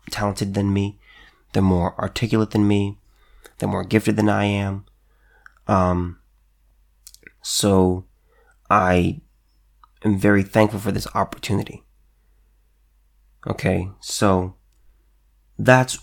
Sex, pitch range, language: male, 95-110 Hz, English